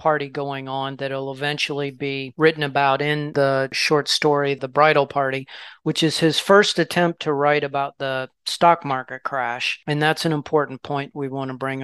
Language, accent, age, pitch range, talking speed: English, American, 40-59, 140-160 Hz, 190 wpm